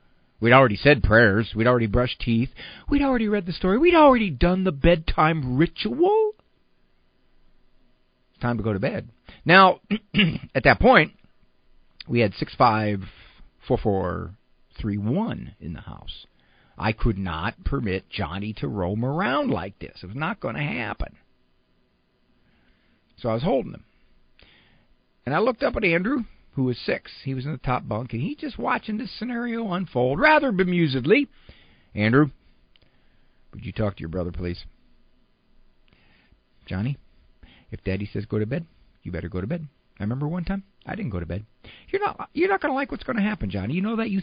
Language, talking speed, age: English, 165 wpm, 50-69